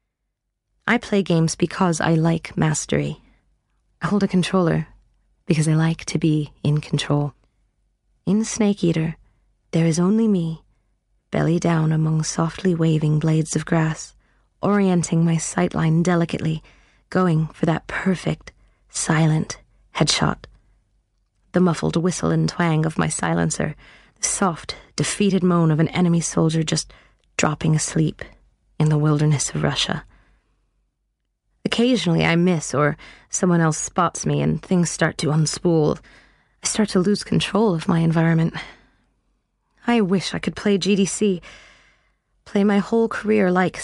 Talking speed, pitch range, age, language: 135 wpm, 150-185 Hz, 20-39, English